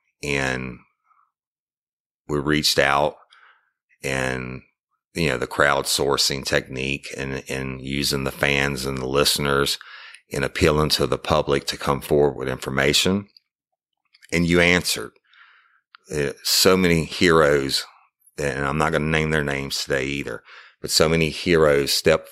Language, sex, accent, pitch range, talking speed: English, male, American, 70-80 Hz, 130 wpm